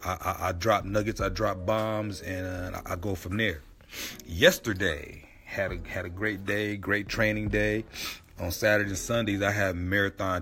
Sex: male